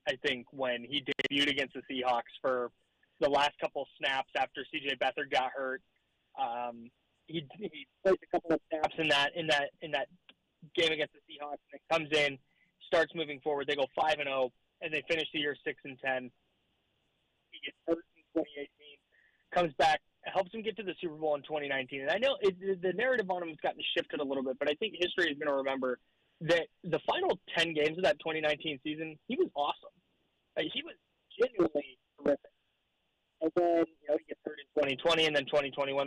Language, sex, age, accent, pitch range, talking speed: English, male, 20-39, American, 135-165 Hz, 205 wpm